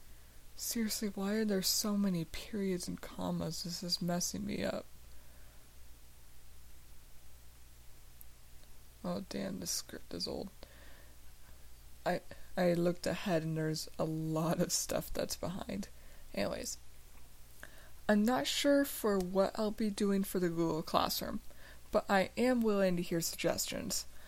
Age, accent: 20-39, American